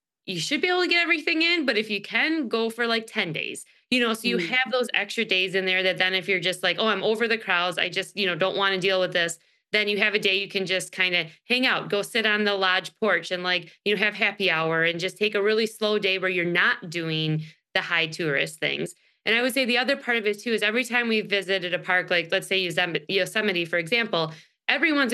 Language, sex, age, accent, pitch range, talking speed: English, female, 20-39, American, 185-240 Hz, 265 wpm